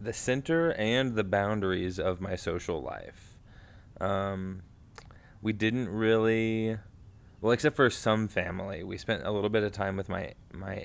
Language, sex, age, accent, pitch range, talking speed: English, male, 20-39, American, 95-110 Hz, 155 wpm